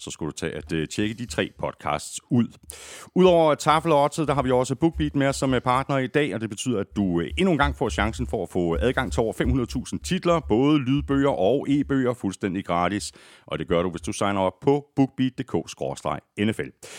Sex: male